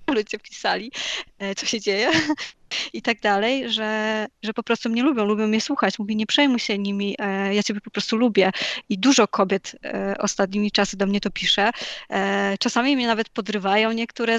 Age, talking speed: 20-39, 170 wpm